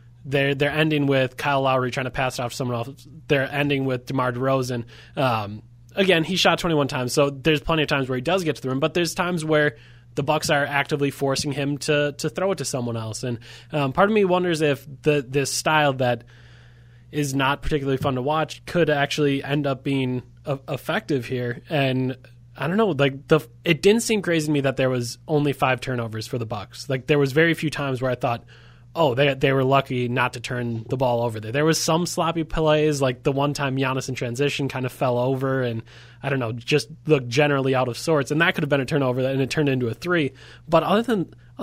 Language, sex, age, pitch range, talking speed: English, male, 20-39, 125-155 Hz, 240 wpm